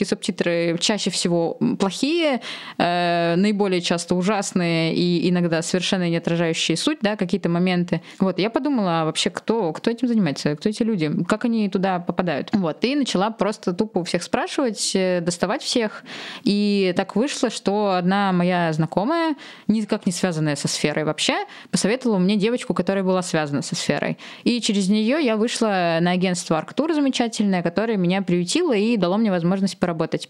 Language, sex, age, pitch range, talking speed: Russian, female, 20-39, 175-220 Hz, 160 wpm